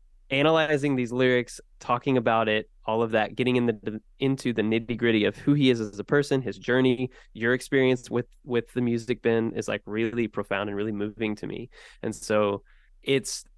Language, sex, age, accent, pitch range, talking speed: English, male, 20-39, American, 110-130 Hz, 190 wpm